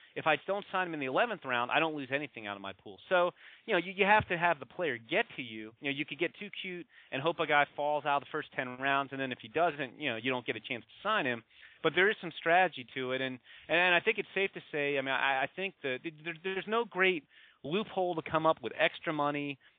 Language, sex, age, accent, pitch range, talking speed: English, male, 30-49, American, 130-175 Hz, 285 wpm